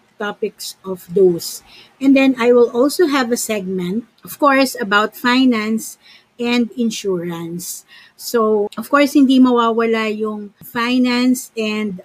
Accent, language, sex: native, Filipino, female